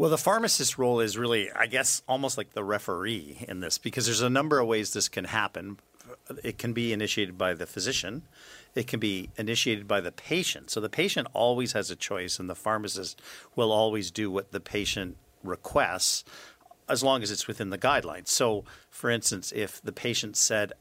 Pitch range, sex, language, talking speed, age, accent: 95-120 Hz, male, English, 195 wpm, 50-69, American